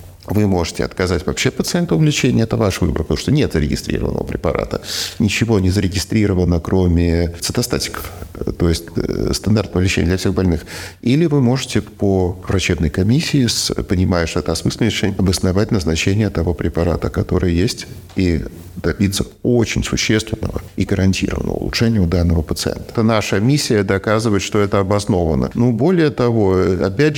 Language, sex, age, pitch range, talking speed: Russian, male, 50-69, 85-105 Hz, 140 wpm